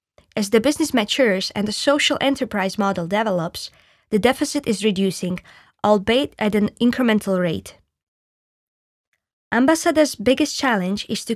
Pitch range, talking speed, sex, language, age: 200-255 Hz, 125 wpm, female, Slovak, 20-39